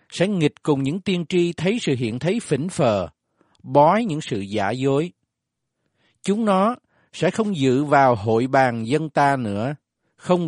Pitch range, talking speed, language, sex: 110-165 Hz, 165 wpm, Vietnamese, male